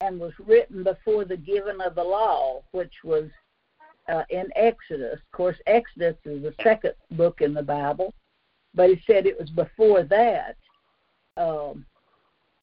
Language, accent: English, American